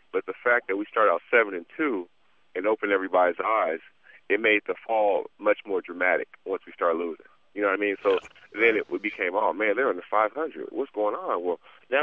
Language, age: English, 30-49